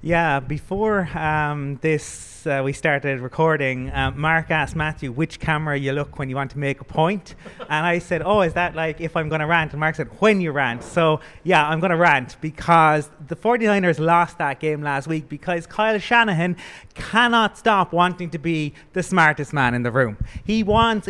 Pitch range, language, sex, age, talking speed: 155-200 Hz, English, male, 30-49, 195 wpm